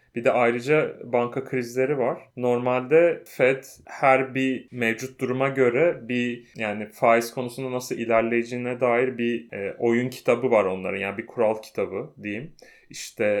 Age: 30-49